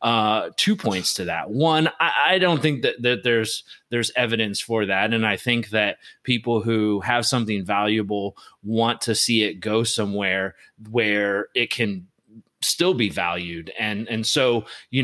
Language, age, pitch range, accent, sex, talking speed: English, 30-49, 100-120 Hz, American, male, 170 wpm